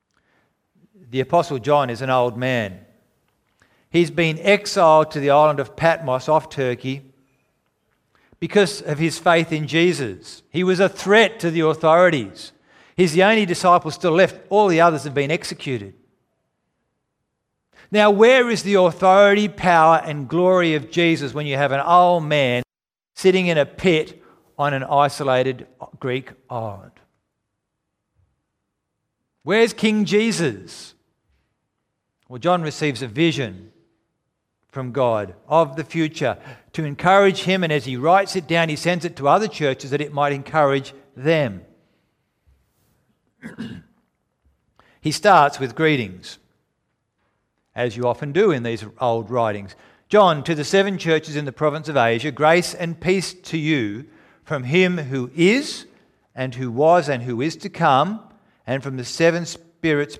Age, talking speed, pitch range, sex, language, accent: 50-69, 145 wpm, 130-175 Hz, male, English, Australian